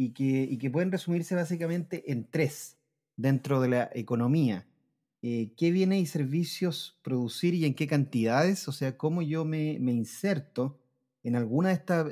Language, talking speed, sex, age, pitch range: Spanish, 170 wpm, male, 30-49, 135-175 Hz